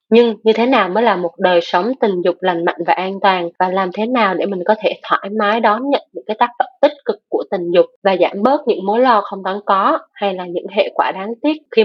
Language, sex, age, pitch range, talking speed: Vietnamese, female, 20-39, 180-230 Hz, 275 wpm